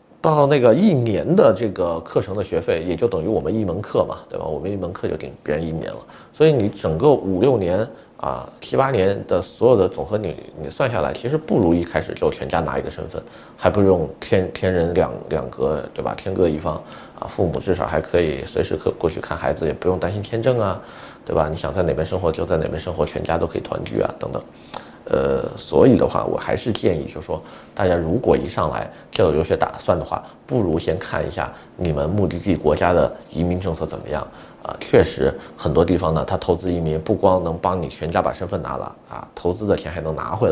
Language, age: Chinese, 30-49